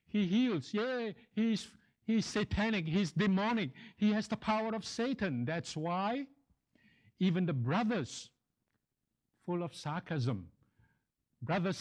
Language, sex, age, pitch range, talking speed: English, male, 60-79, 145-215 Hz, 115 wpm